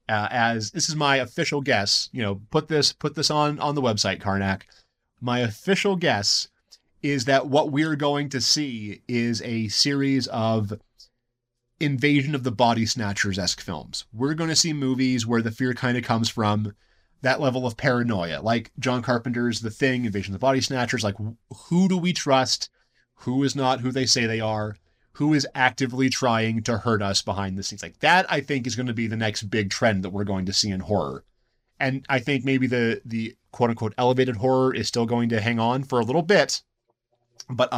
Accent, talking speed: American, 200 wpm